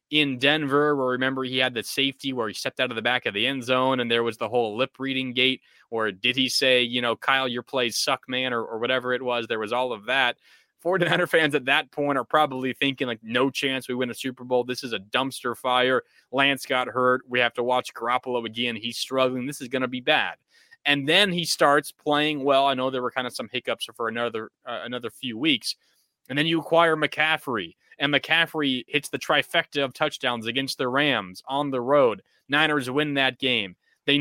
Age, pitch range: 20-39, 125-150 Hz